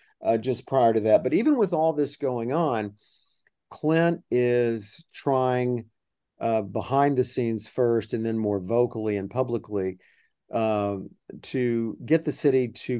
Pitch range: 105-125 Hz